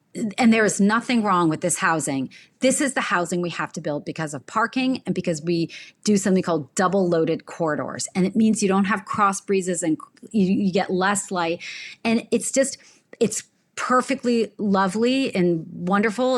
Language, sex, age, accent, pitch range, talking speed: English, female, 30-49, American, 175-225 Hz, 180 wpm